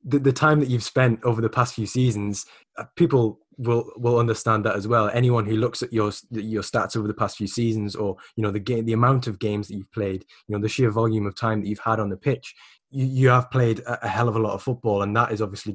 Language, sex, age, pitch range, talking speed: English, male, 10-29, 105-120 Hz, 265 wpm